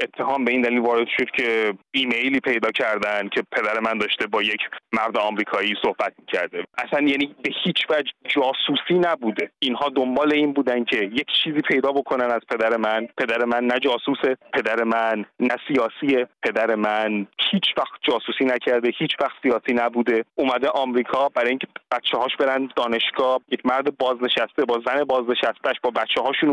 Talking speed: 160 wpm